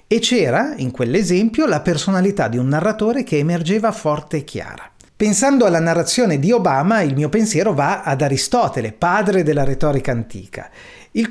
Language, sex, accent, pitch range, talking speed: Italian, male, native, 125-195 Hz, 160 wpm